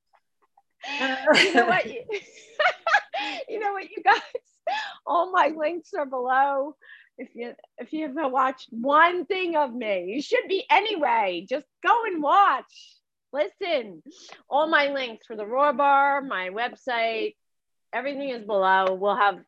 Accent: American